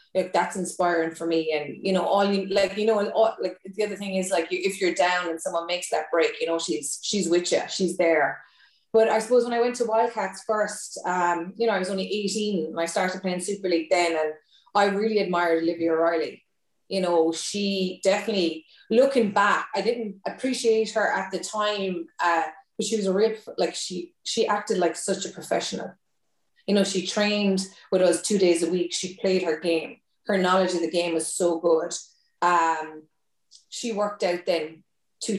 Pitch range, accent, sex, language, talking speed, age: 170-205 Hz, Irish, female, English, 205 wpm, 20-39